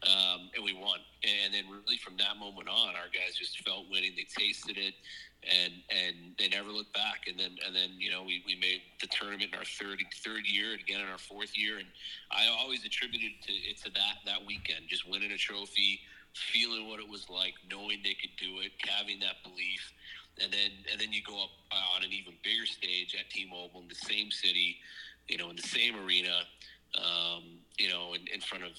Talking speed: 220 wpm